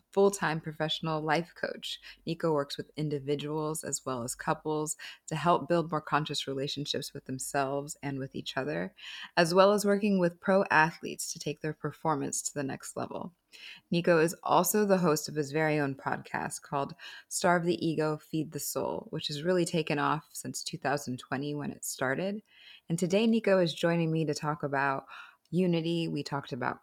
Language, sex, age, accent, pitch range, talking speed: English, female, 20-39, American, 145-170 Hz, 175 wpm